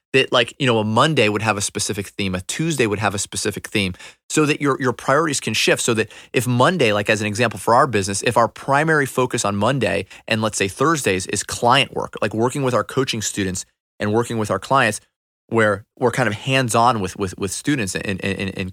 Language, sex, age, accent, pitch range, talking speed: English, male, 30-49, American, 100-125 Hz, 230 wpm